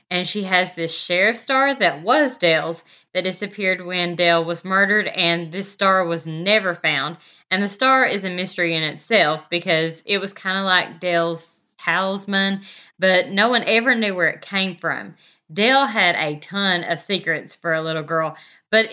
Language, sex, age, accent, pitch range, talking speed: English, female, 20-39, American, 170-205 Hz, 180 wpm